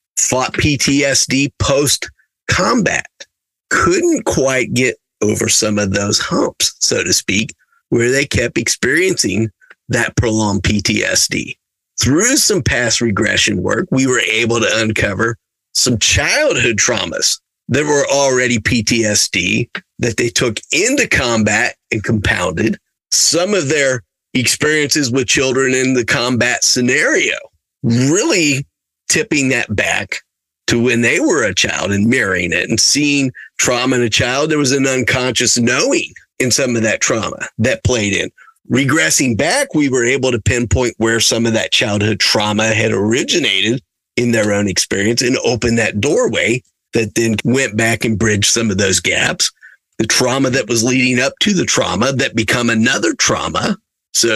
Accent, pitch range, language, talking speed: American, 110-130 Hz, English, 150 wpm